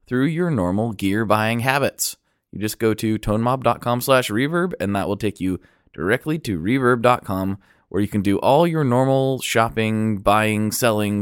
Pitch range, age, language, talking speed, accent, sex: 100-125 Hz, 20-39, English, 165 wpm, American, male